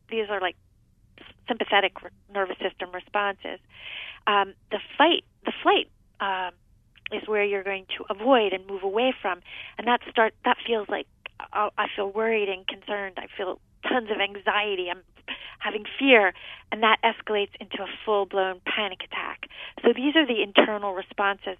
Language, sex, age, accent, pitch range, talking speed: English, female, 40-59, American, 195-225 Hz, 160 wpm